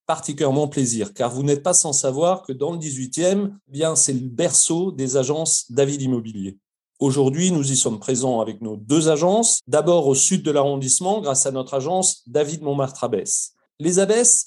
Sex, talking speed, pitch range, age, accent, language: male, 175 wpm, 135-170 Hz, 40-59, French, French